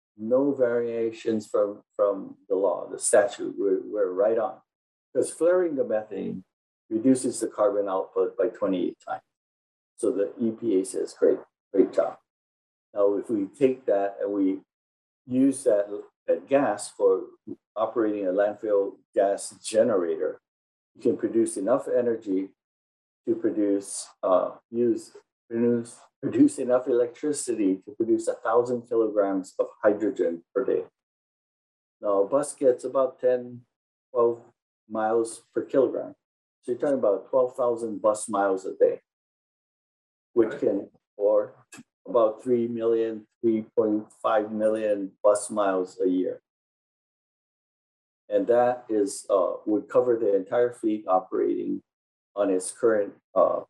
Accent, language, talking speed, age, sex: American, English, 130 wpm, 50-69, male